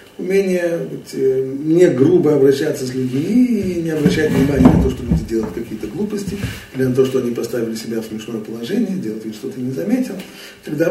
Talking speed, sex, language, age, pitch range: 185 wpm, male, Russian, 40-59, 120-170 Hz